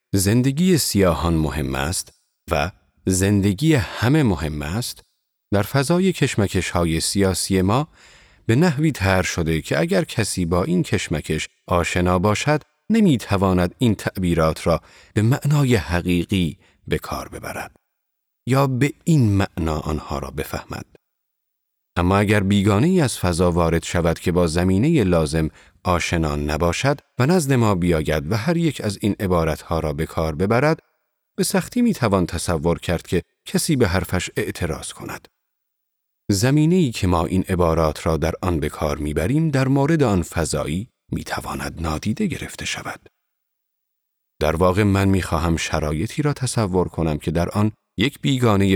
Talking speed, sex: 150 wpm, male